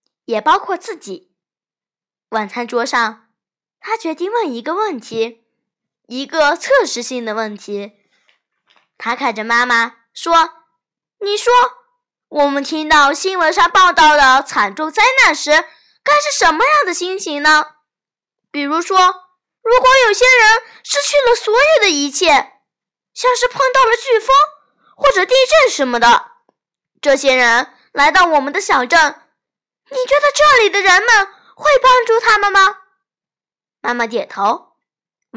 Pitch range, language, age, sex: 240-400 Hz, Chinese, 10-29, female